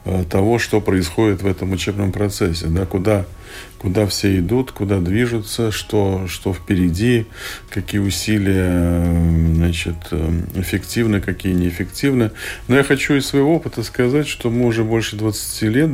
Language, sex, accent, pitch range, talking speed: Russian, male, native, 95-115 Hz, 135 wpm